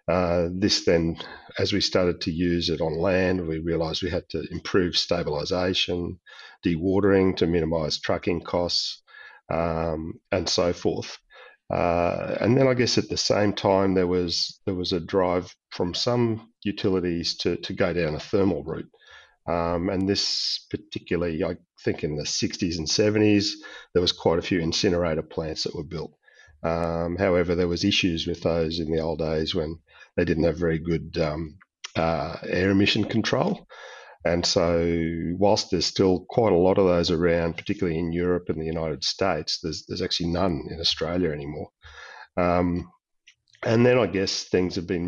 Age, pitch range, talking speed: 40-59, 85-95 Hz, 170 wpm